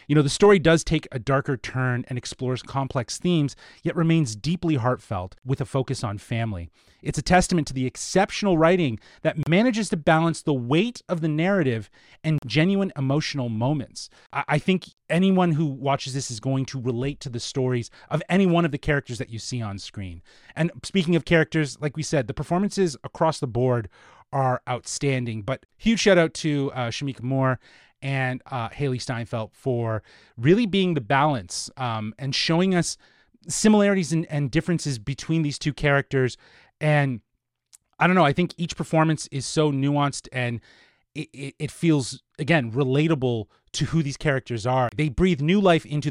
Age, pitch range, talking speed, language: 30-49, 125-165 Hz, 175 wpm, English